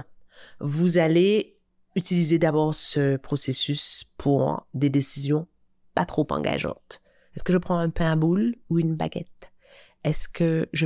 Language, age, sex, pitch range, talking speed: French, 30-49, female, 135-170 Hz, 145 wpm